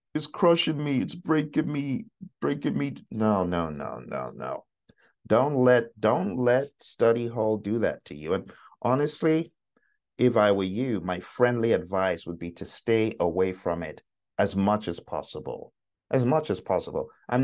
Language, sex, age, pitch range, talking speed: English, male, 50-69, 100-145 Hz, 165 wpm